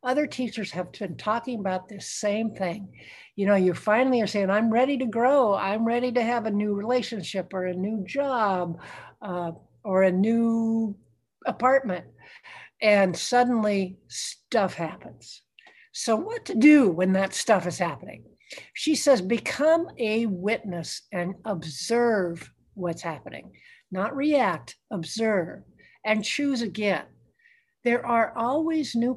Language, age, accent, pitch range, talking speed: English, 60-79, American, 190-250 Hz, 140 wpm